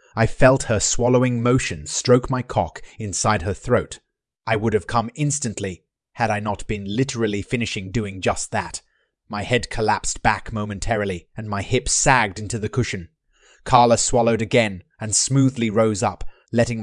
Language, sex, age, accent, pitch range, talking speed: English, male, 30-49, British, 100-130 Hz, 160 wpm